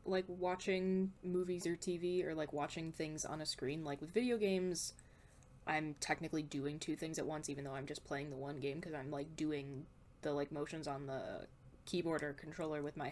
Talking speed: 205 wpm